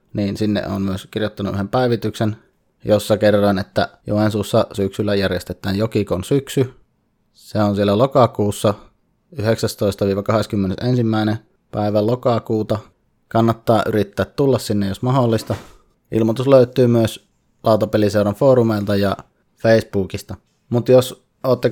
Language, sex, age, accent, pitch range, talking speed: English, male, 20-39, Finnish, 100-115 Hz, 105 wpm